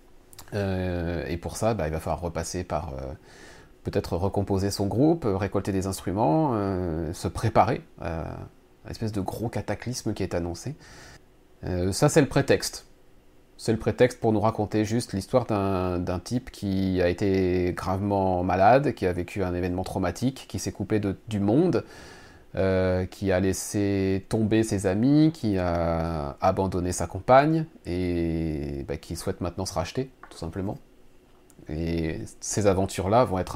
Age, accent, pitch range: 30-49, French, 90-110 Hz